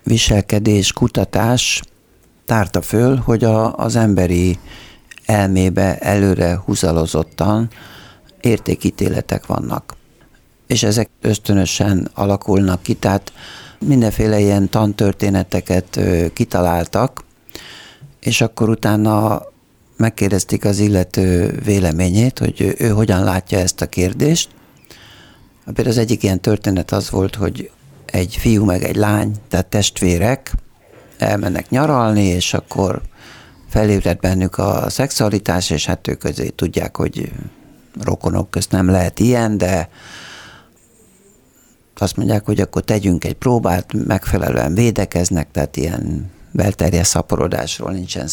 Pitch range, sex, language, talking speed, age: 90-110 Hz, male, Hungarian, 105 wpm, 60-79